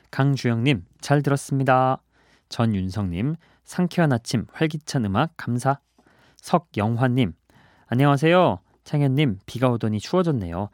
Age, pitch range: 30-49, 105-145 Hz